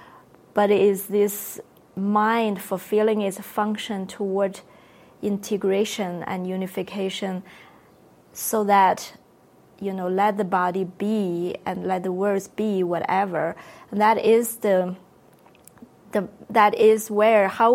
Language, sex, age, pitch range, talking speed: English, female, 20-39, 185-210 Hz, 120 wpm